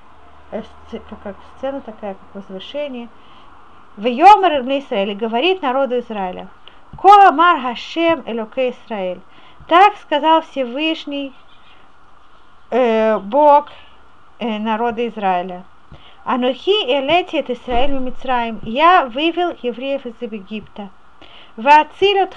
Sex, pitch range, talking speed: female, 235-320 Hz, 90 wpm